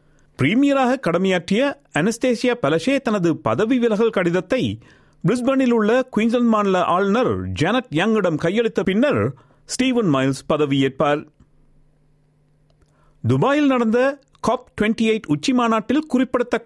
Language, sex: Tamil, male